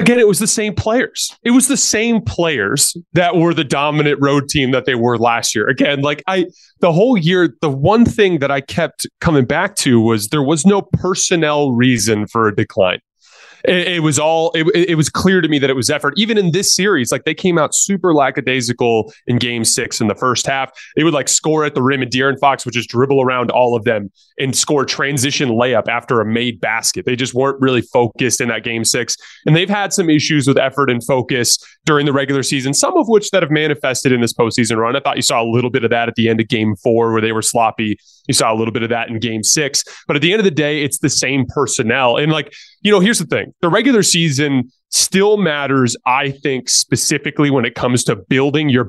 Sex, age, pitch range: male, 20-39, 120-155 Hz